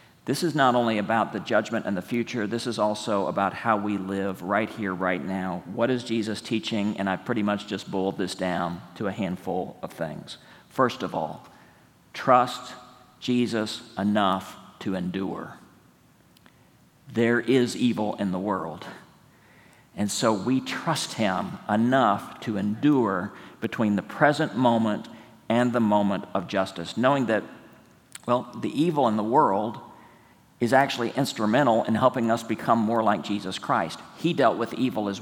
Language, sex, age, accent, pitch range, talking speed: English, male, 50-69, American, 105-125 Hz, 160 wpm